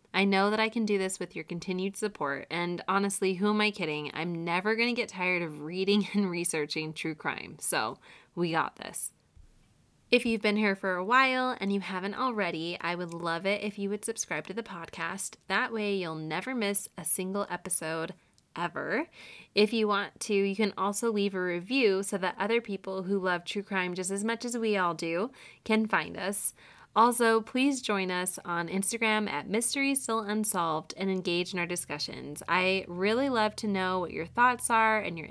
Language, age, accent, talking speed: English, 20-39, American, 195 wpm